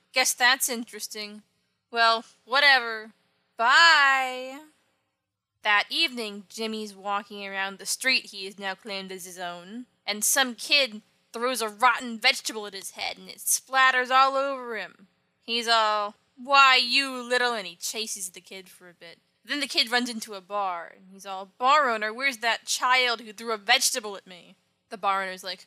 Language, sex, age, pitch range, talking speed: English, female, 20-39, 200-250 Hz, 175 wpm